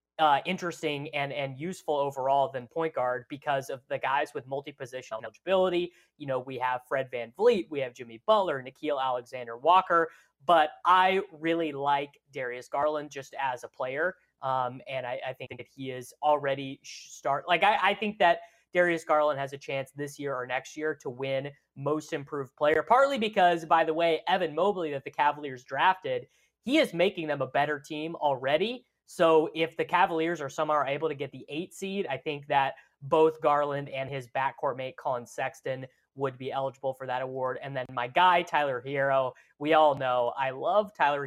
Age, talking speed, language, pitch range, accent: 20-39, 190 wpm, English, 135-170 Hz, American